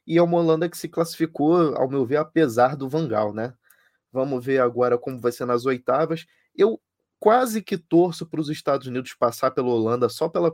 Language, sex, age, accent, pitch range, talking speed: Portuguese, male, 20-39, Brazilian, 115-140 Hz, 200 wpm